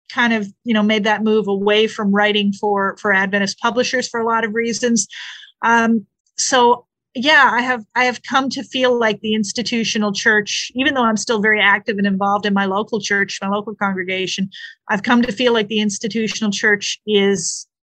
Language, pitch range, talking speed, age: English, 205-235 Hz, 190 wpm, 40-59